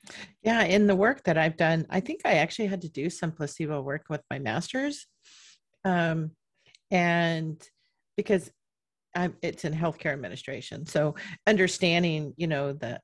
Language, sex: English, female